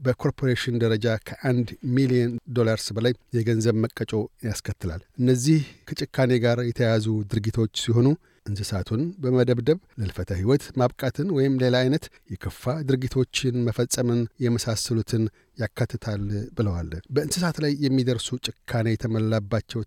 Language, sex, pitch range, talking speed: Amharic, male, 115-130 Hz, 105 wpm